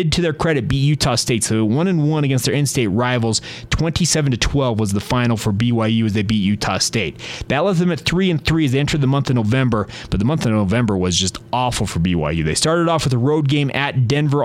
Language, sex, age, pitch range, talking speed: English, male, 30-49, 120-145 Hz, 250 wpm